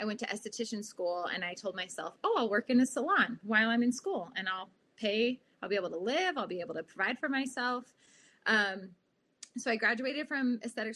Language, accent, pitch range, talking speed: English, American, 185-235 Hz, 220 wpm